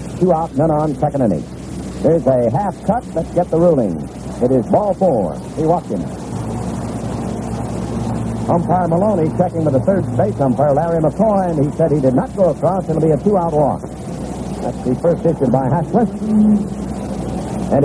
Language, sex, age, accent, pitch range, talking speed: English, male, 60-79, American, 130-170 Hz, 170 wpm